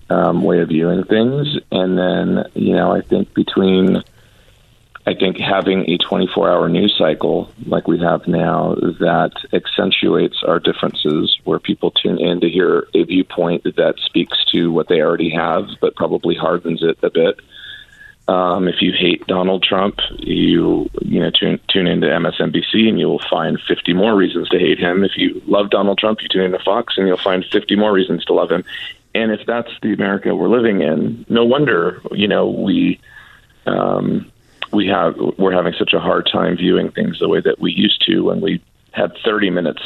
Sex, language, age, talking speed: male, English, 40-59, 190 wpm